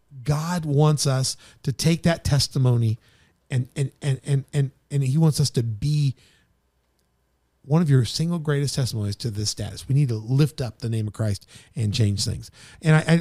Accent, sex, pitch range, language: American, male, 105-145 Hz, English